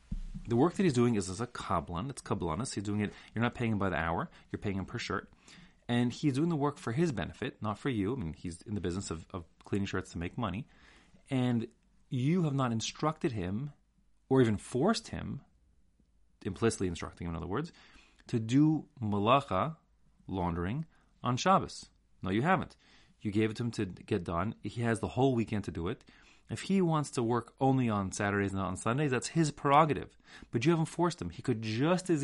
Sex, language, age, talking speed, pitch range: male, English, 30-49, 215 wpm, 100-140 Hz